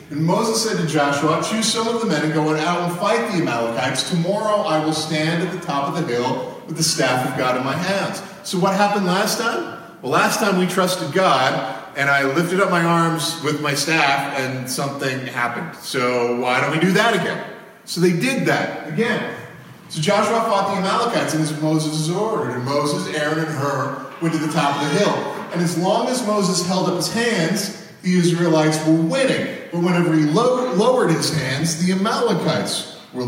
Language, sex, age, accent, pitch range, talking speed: English, male, 40-59, American, 155-205 Hz, 205 wpm